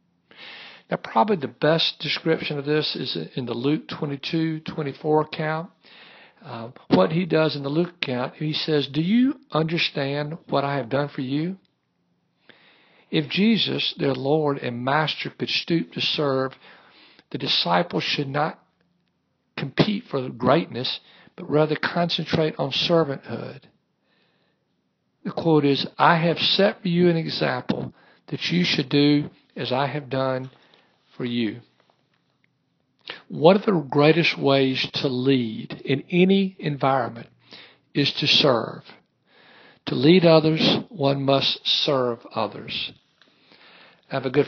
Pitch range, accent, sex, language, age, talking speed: 135-160 Hz, American, male, English, 60-79, 135 wpm